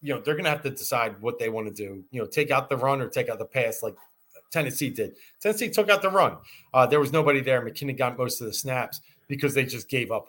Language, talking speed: English, 280 wpm